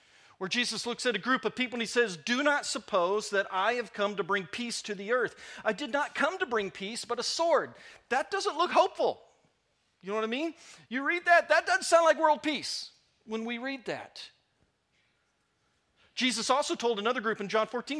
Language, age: English, 40-59